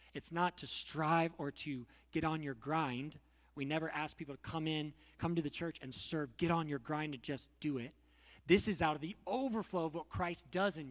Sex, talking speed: male, 230 wpm